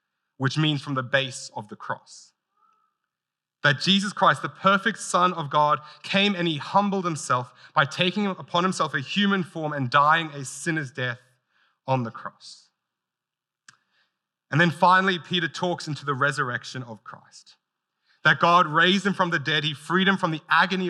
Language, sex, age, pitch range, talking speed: English, male, 30-49, 145-185 Hz, 170 wpm